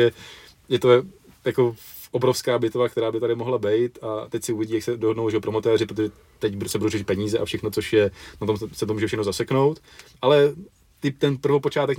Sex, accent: male, native